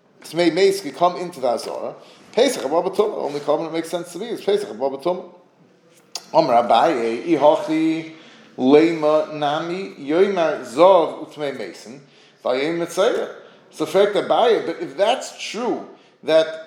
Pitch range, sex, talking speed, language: 155-195 Hz, male, 135 wpm, English